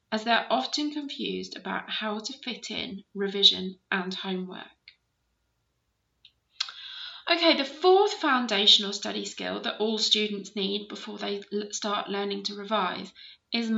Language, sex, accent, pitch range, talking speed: English, female, British, 205-265 Hz, 125 wpm